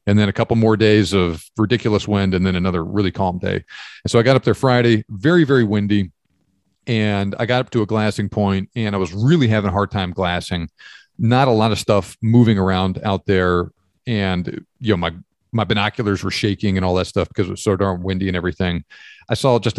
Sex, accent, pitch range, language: male, American, 95-120 Hz, English